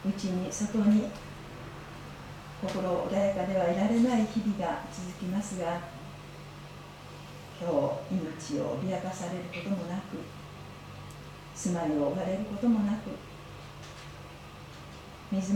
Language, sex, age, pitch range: Japanese, female, 40-59, 170-215 Hz